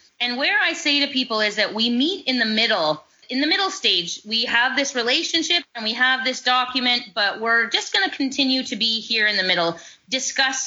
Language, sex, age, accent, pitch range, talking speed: English, female, 20-39, American, 210-275 Hz, 220 wpm